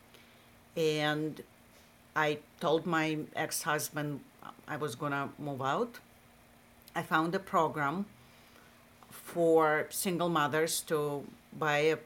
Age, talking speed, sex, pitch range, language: 50-69, 95 wpm, female, 155-180 Hz, English